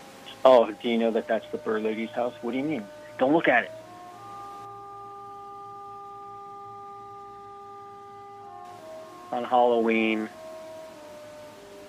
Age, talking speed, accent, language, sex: 40-59, 100 wpm, American, English, male